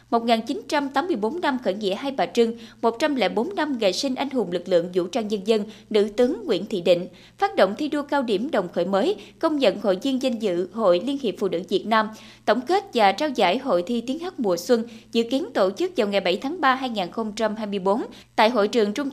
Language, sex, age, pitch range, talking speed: Vietnamese, female, 20-39, 195-275 Hz, 225 wpm